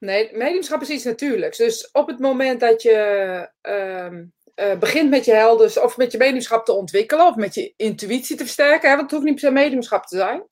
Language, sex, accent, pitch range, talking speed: Dutch, female, Dutch, 210-310 Hz, 215 wpm